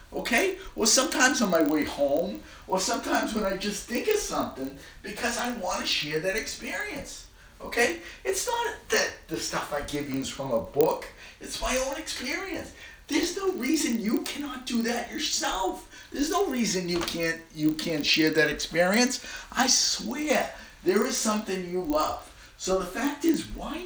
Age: 50-69